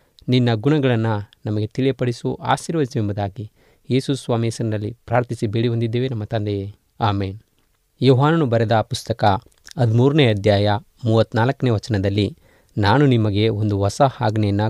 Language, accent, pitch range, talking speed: Kannada, native, 105-120 Hz, 105 wpm